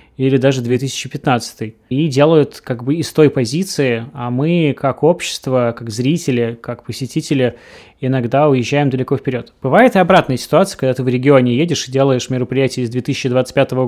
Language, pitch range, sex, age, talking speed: Russian, 125-150 Hz, male, 20-39, 155 wpm